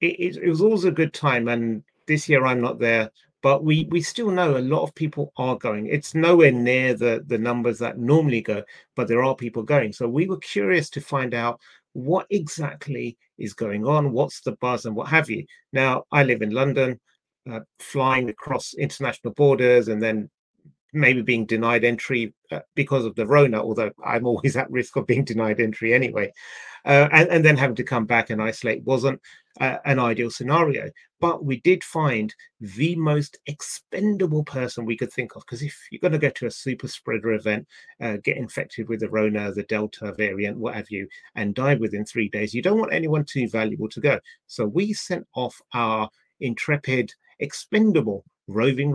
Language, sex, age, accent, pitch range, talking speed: English, male, 30-49, British, 115-155 Hz, 195 wpm